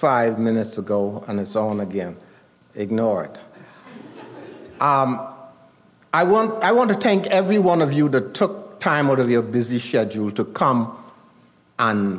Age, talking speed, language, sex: 60-79, 155 wpm, English, male